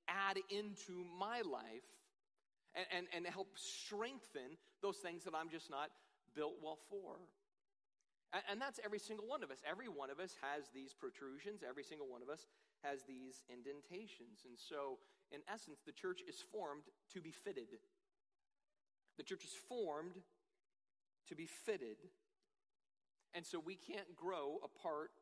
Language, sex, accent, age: English, male, American, 40-59